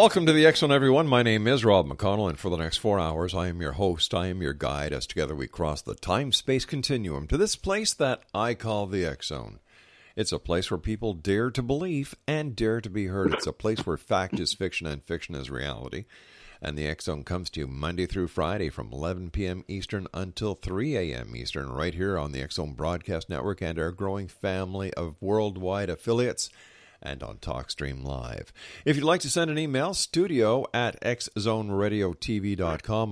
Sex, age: male, 50-69